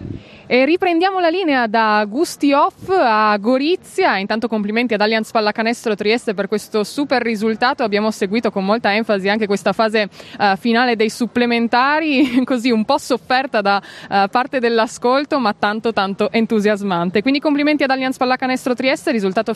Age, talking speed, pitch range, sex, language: 20-39, 145 wpm, 215-260 Hz, female, Italian